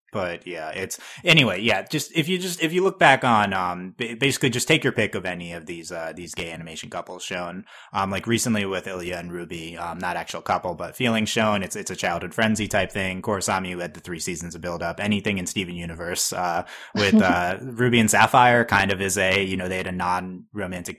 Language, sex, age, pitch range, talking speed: English, male, 20-39, 90-110 Hz, 230 wpm